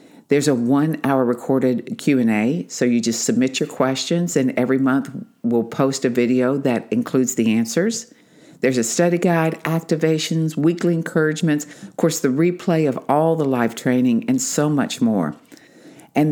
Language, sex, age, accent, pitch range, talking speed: English, female, 50-69, American, 135-180 Hz, 160 wpm